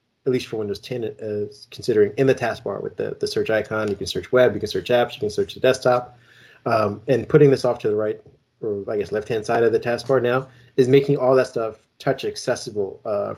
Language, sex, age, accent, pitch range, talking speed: English, male, 30-49, American, 110-135 Hz, 235 wpm